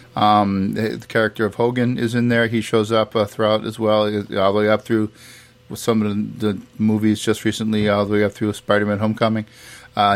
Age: 40-59